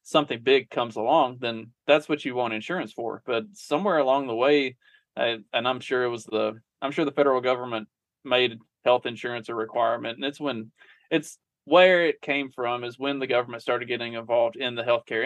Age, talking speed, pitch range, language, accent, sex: 20-39, 195 wpm, 115-140 Hz, English, American, male